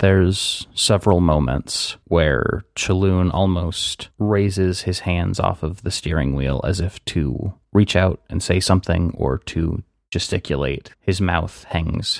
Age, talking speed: 30-49, 140 wpm